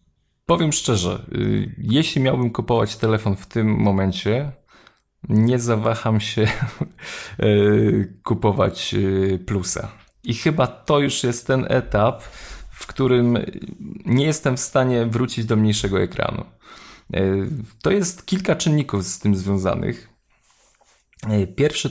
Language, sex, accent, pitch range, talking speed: Polish, male, native, 100-125 Hz, 105 wpm